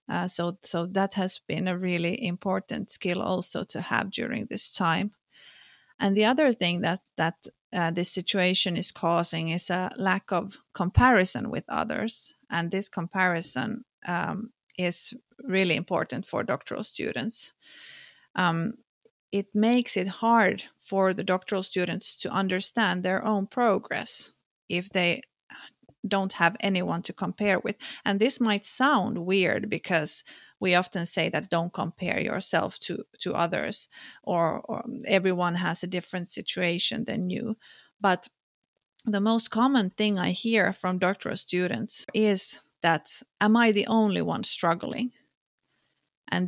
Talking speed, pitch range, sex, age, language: 140 wpm, 180-215 Hz, female, 30-49, Finnish